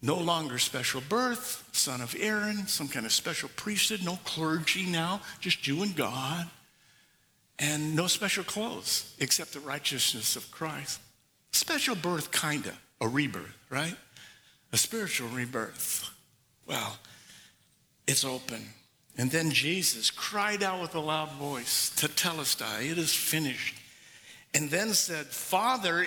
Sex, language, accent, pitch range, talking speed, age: male, English, American, 125-180 Hz, 135 wpm, 60-79